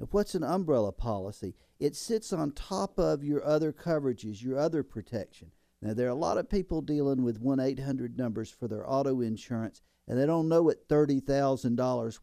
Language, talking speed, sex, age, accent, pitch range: English, 175 wpm, male, 50-69, American, 115-155 Hz